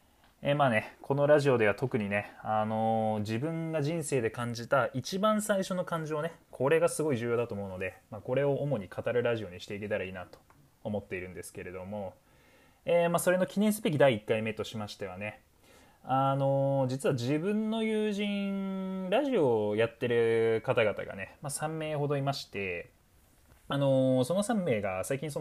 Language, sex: Japanese, male